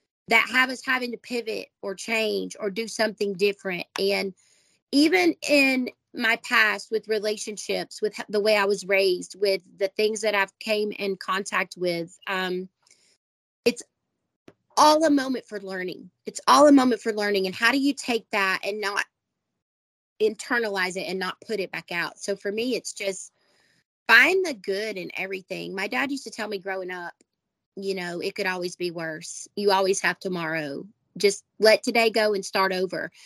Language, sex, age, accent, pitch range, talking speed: English, female, 30-49, American, 190-230 Hz, 180 wpm